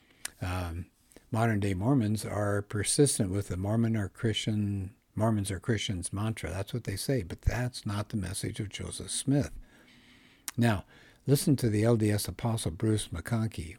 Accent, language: American, English